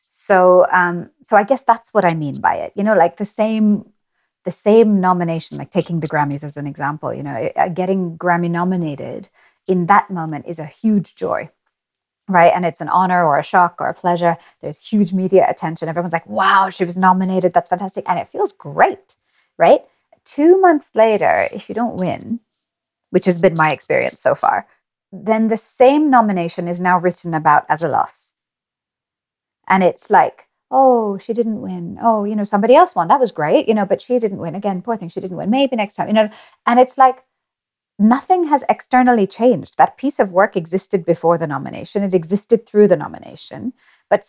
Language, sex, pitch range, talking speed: English, female, 175-230 Hz, 195 wpm